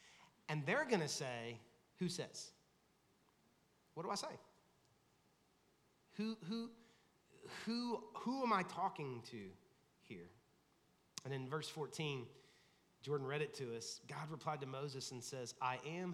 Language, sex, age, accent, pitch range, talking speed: English, male, 30-49, American, 130-180 Hz, 140 wpm